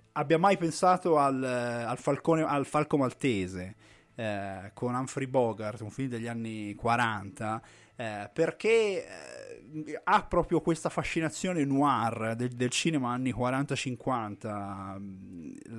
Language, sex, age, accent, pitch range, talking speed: Italian, male, 20-39, native, 115-145 Hz, 110 wpm